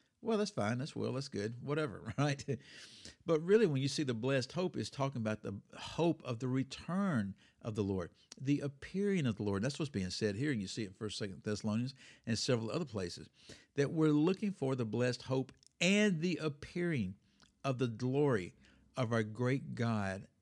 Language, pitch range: English, 110-150 Hz